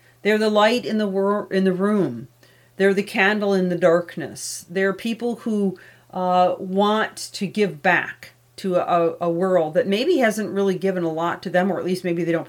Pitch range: 170-200 Hz